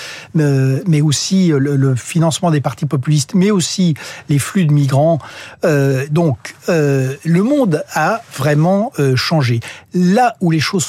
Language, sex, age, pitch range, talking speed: French, male, 60-79, 130-165 Hz, 155 wpm